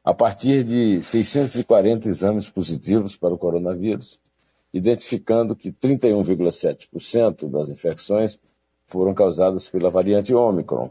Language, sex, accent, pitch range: Portuguese, male, Brazilian, 85-105 Hz